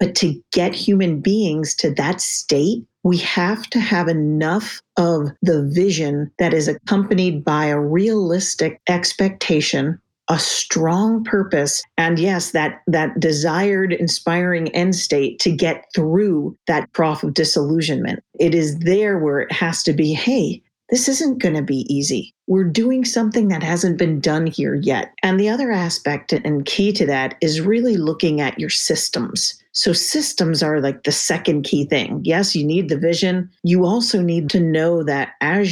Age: 40-59